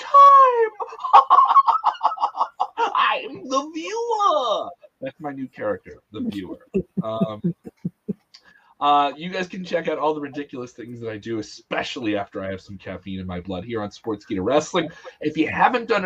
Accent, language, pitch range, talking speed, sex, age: American, English, 125-190 Hz, 150 wpm, male, 30-49